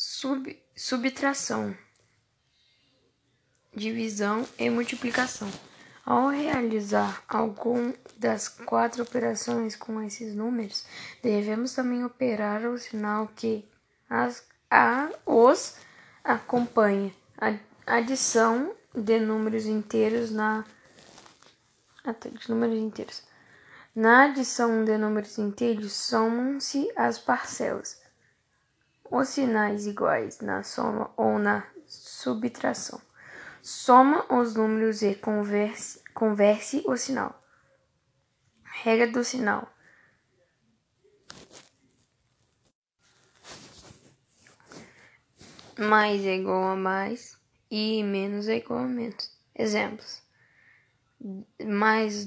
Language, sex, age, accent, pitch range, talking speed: Portuguese, female, 10-29, Brazilian, 210-245 Hz, 85 wpm